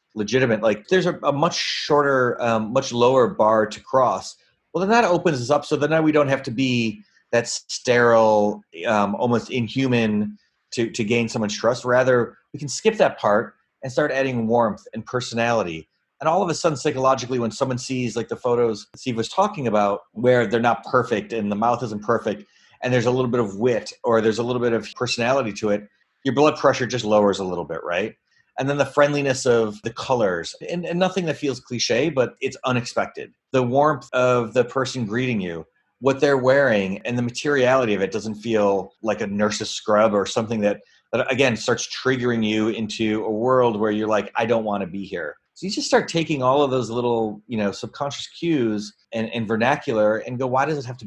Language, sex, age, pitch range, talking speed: English, male, 30-49, 110-135 Hz, 210 wpm